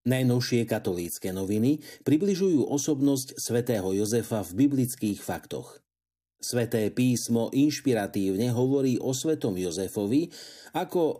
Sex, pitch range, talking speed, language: male, 105-135 Hz, 95 wpm, Slovak